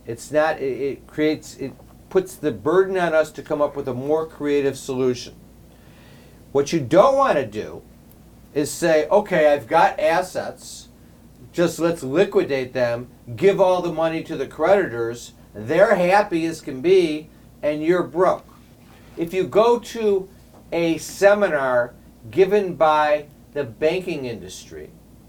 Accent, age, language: American, 50-69, English